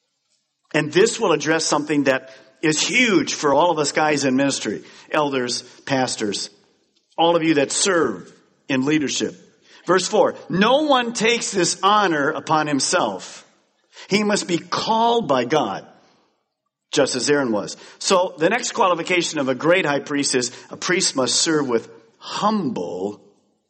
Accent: American